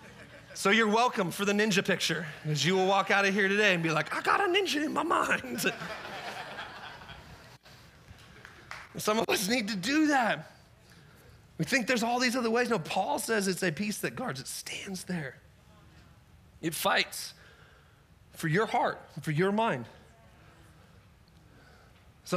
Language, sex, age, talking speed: English, male, 30-49, 160 wpm